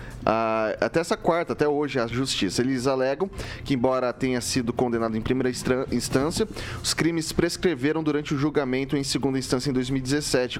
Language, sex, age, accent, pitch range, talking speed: Portuguese, male, 30-49, Brazilian, 120-150 Hz, 160 wpm